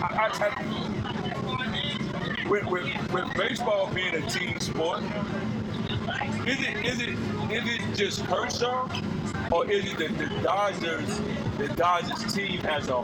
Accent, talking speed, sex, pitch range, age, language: American, 135 wpm, male, 180-215 Hz, 40-59, English